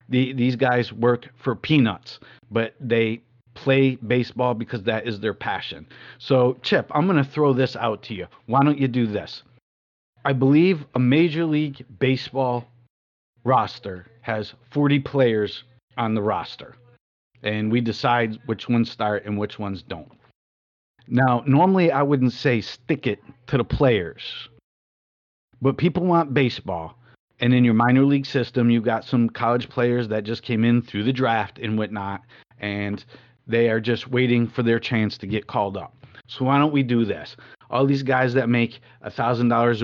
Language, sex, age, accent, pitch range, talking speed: English, male, 50-69, American, 110-130 Hz, 165 wpm